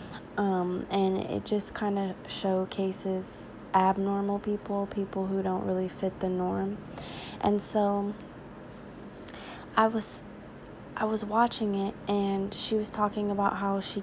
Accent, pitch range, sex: American, 190-210 Hz, female